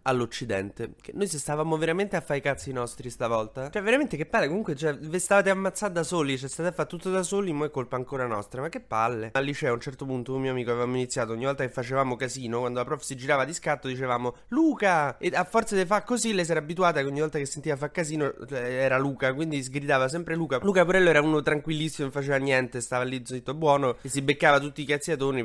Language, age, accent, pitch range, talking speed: Italian, 20-39, native, 120-160 Hz, 245 wpm